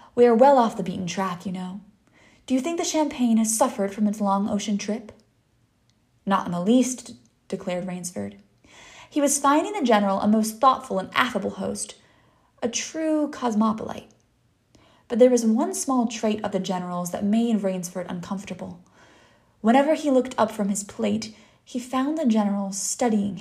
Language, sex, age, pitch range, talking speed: English, female, 20-39, 190-235 Hz, 170 wpm